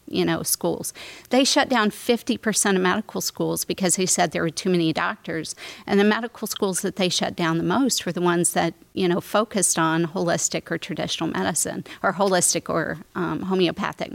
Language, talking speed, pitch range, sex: English, 190 wpm, 175-220 Hz, female